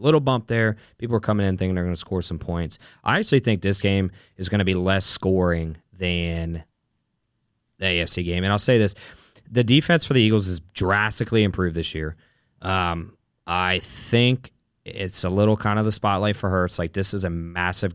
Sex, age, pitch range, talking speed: male, 20-39, 90-105 Hz, 195 wpm